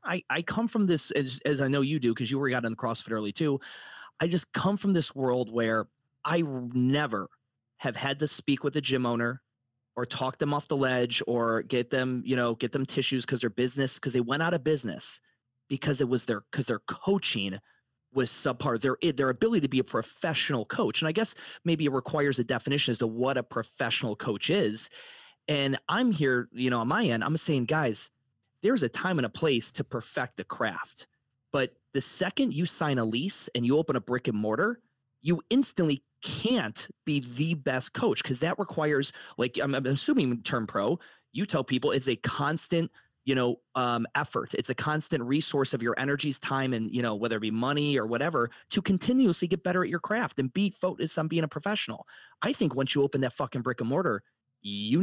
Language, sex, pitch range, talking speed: English, male, 125-155 Hz, 215 wpm